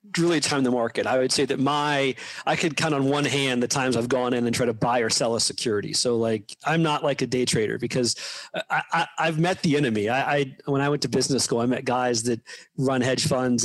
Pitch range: 130-160 Hz